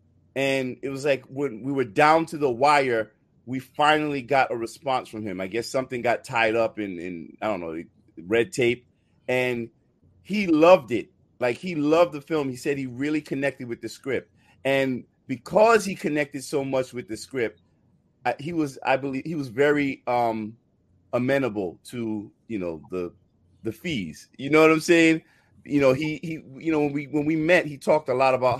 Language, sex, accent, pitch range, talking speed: English, male, American, 120-155 Hz, 195 wpm